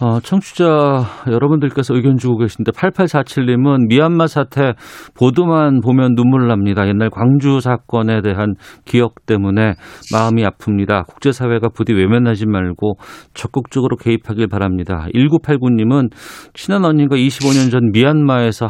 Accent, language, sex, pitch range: native, Korean, male, 110-145 Hz